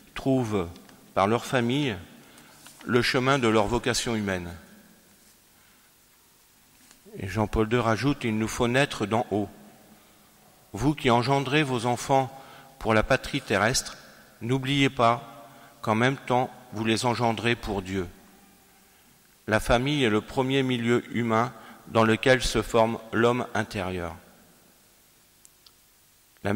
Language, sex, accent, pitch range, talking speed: French, male, French, 110-130 Hz, 120 wpm